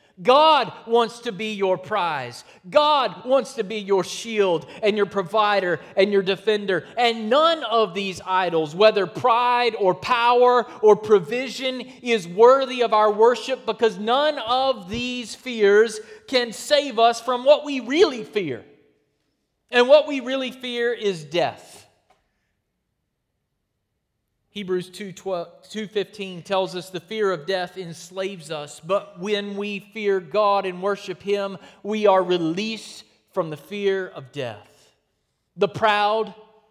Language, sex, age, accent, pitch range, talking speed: English, male, 30-49, American, 190-235 Hz, 135 wpm